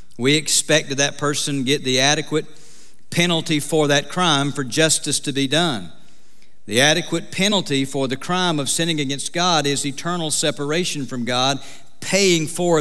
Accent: American